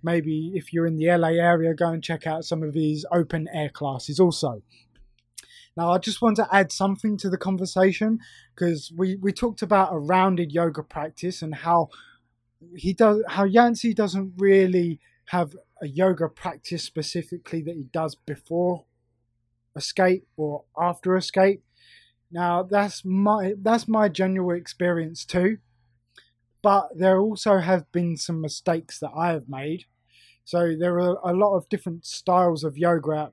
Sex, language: male, English